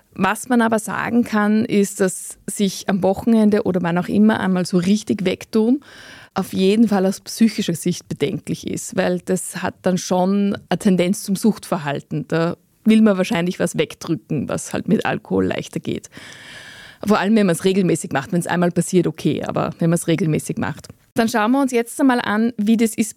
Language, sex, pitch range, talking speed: German, female, 185-225 Hz, 195 wpm